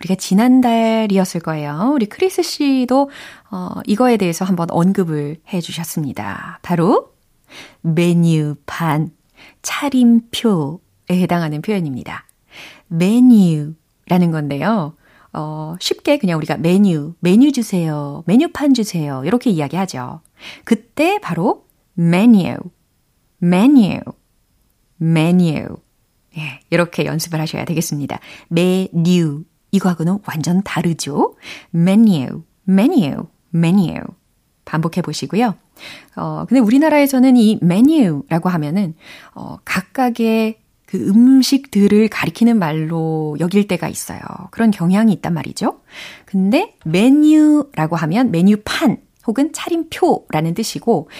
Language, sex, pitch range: Korean, female, 165-235 Hz